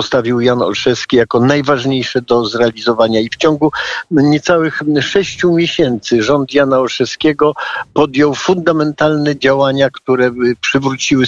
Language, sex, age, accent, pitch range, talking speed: Polish, male, 50-69, native, 120-145 Hz, 115 wpm